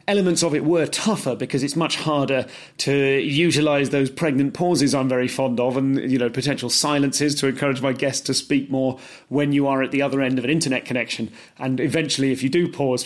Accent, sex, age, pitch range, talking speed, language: British, male, 30-49, 125-175 Hz, 215 wpm, English